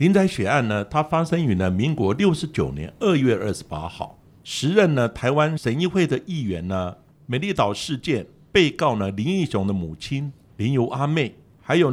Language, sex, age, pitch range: Chinese, male, 60-79, 105-155 Hz